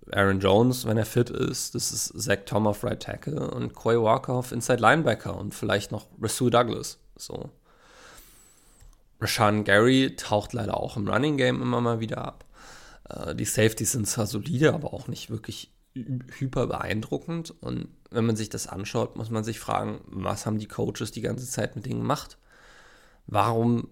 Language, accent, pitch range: German, German, 100-120 Hz